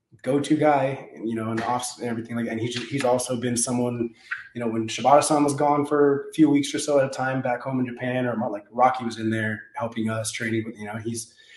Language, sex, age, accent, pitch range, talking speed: English, male, 20-39, American, 115-140 Hz, 265 wpm